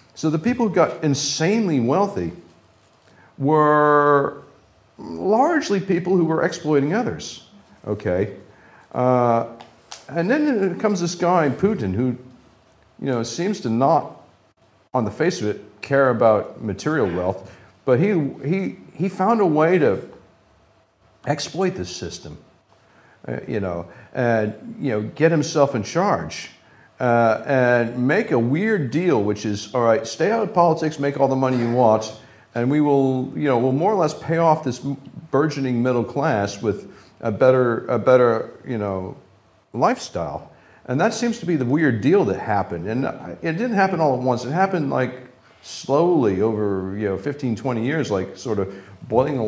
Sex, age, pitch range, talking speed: male, 50-69, 110-160 Hz, 160 wpm